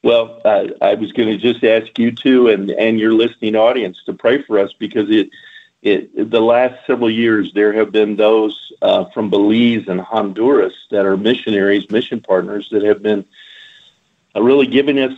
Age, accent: 50-69, American